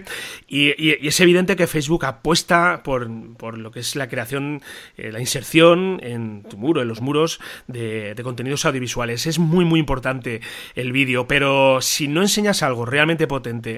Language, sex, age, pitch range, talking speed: Spanish, male, 30-49, 125-160 Hz, 180 wpm